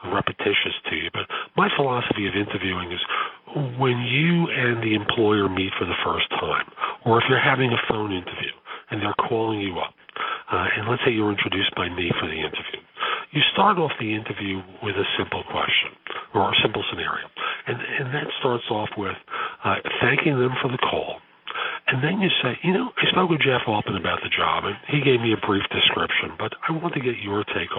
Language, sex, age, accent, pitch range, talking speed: English, male, 40-59, American, 105-135 Hz, 205 wpm